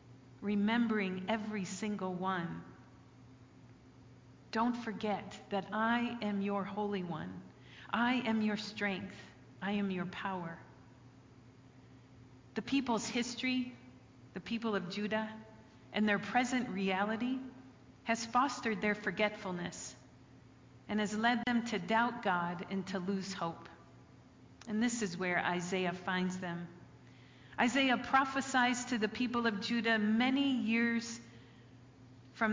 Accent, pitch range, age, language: American, 170-225 Hz, 40-59, English